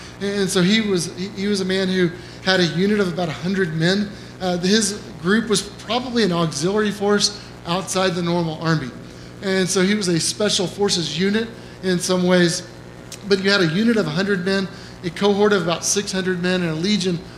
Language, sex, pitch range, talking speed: English, male, 165-195 Hz, 195 wpm